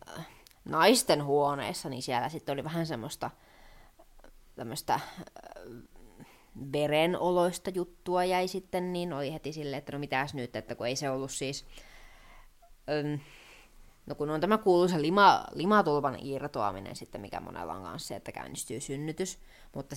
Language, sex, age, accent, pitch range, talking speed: Finnish, female, 20-39, native, 135-175 Hz, 130 wpm